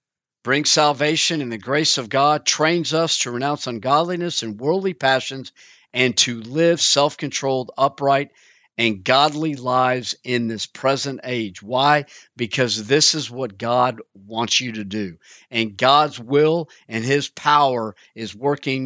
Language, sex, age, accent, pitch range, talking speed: English, male, 50-69, American, 120-150 Hz, 145 wpm